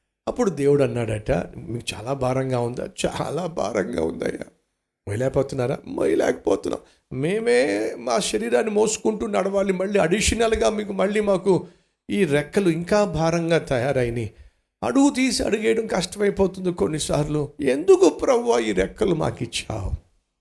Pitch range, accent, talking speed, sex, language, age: 110-175 Hz, native, 110 wpm, male, Telugu, 60-79